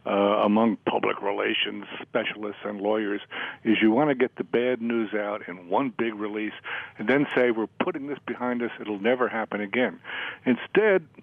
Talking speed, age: 175 wpm, 60-79